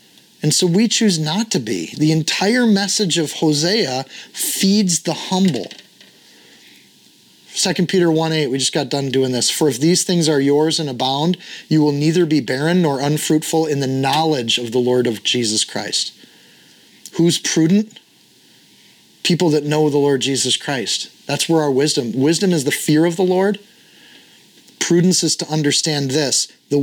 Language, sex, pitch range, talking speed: English, male, 140-175 Hz, 165 wpm